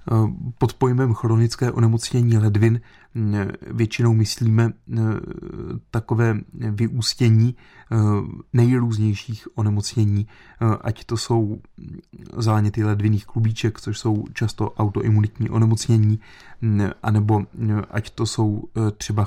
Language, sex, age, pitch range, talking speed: Czech, male, 30-49, 105-115 Hz, 85 wpm